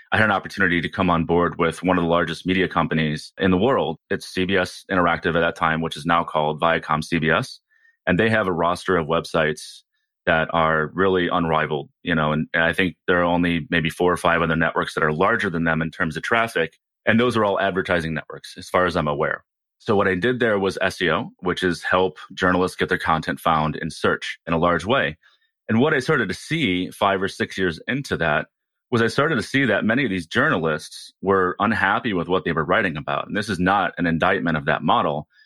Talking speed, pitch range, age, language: 230 wpm, 80-95 Hz, 30-49, English